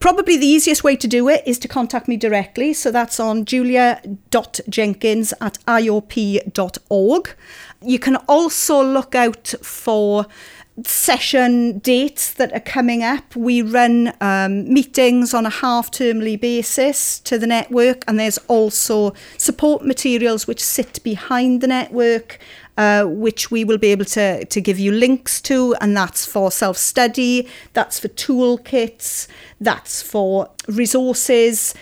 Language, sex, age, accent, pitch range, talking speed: English, female, 40-59, British, 215-255 Hz, 140 wpm